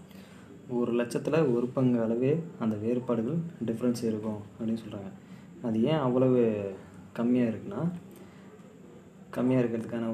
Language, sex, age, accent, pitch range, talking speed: Tamil, male, 20-39, native, 110-145 Hz, 105 wpm